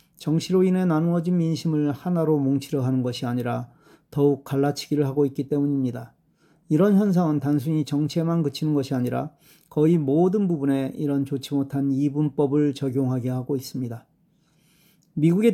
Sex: male